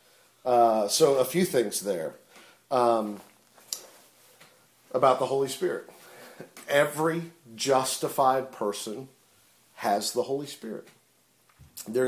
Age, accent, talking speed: 50-69, American, 95 wpm